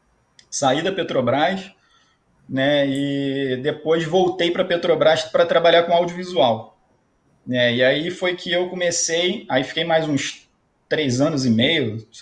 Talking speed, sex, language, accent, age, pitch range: 140 wpm, male, Portuguese, Brazilian, 20-39, 125-170 Hz